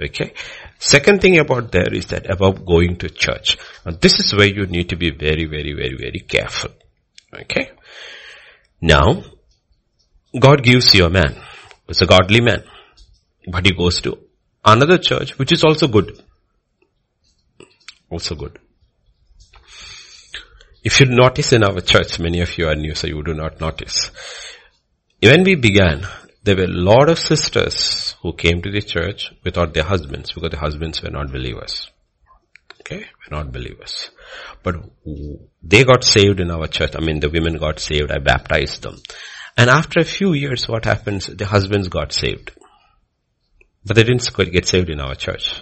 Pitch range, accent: 80-115 Hz, Indian